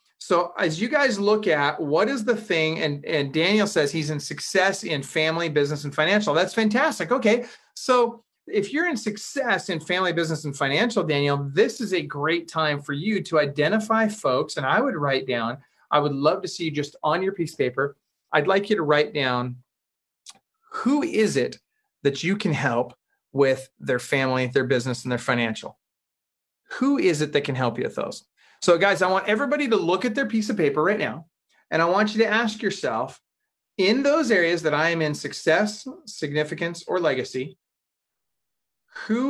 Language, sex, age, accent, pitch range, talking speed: English, male, 30-49, American, 145-215 Hz, 190 wpm